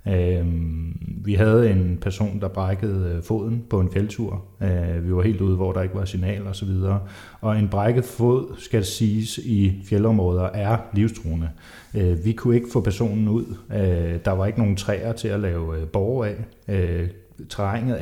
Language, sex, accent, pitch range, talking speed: Danish, male, native, 95-110 Hz, 165 wpm